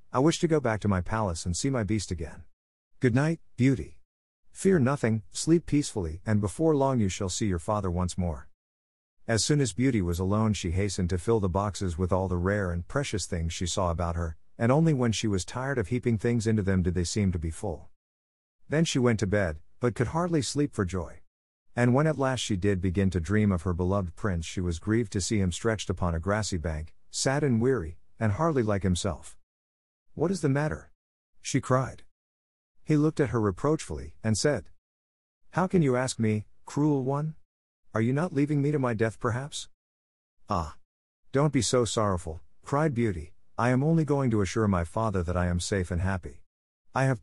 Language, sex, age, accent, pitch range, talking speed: English, male, 50-69, American, 90-130 Hz, 210 wpm